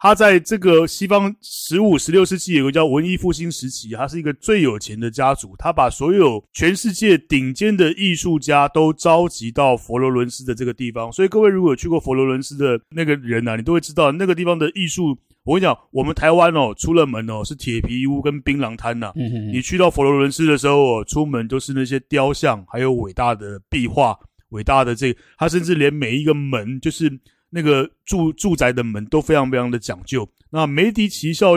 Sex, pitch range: male, 125-170 Hz